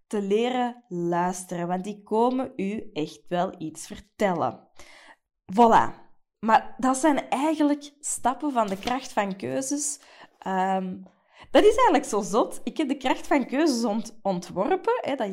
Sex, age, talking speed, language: female, 20-39, 135 wpm, Dutch